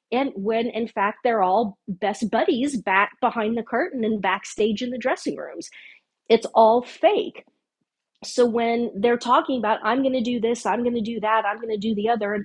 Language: English